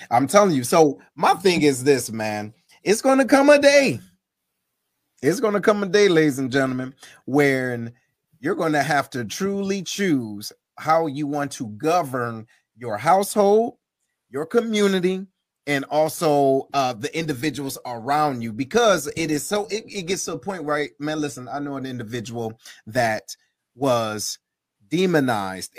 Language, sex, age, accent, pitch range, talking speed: English, male, 30-49, American, 135-200 Hz, 155 wpm